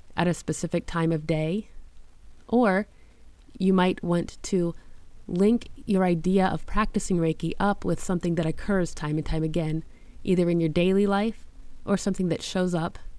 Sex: female